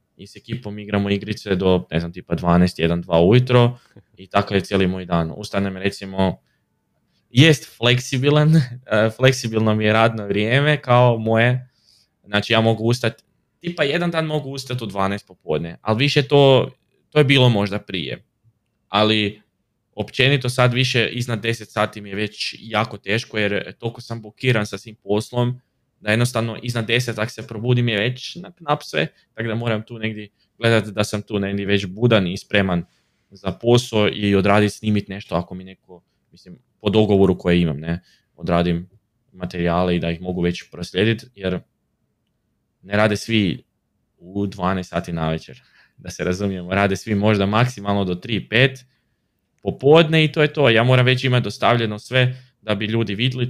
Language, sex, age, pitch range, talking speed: Croatian, male, 20-39, 100-120 Hz, 170 wpm